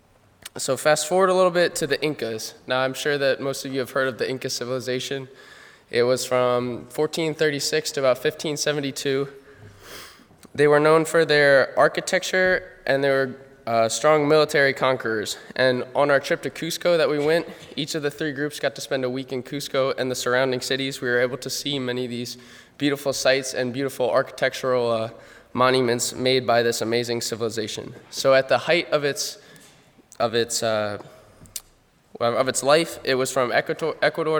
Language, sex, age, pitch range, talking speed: English, male, 20-39, 125-145 Hz, 180 wpm